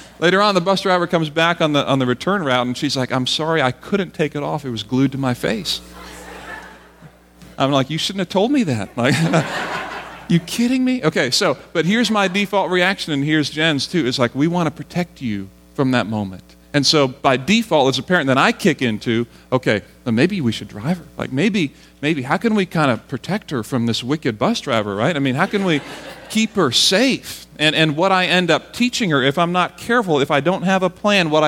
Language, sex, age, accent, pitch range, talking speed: English, male, 40-59, American, 115-170 Hz, 235 wpm